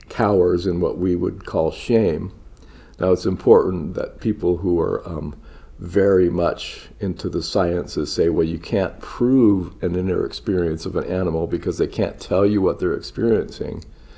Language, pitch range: English, 85-110 Hz